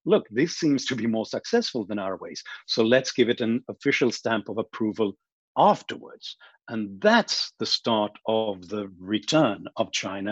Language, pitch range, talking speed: English, 105-130 Hz, 170 wpm